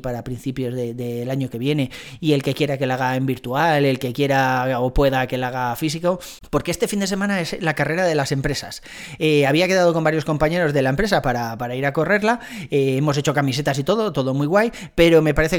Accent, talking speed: Spanish, 245 wpm